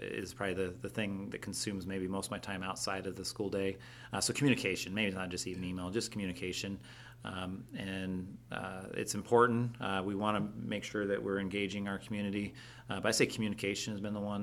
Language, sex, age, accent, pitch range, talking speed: English, male, 40-59, American, 95-115 Hz, 215 wpm